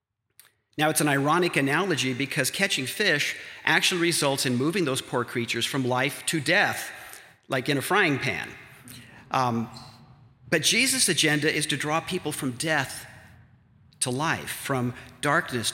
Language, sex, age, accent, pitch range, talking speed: English, male, 50-69, American, 120-155 Hz, 145 wpm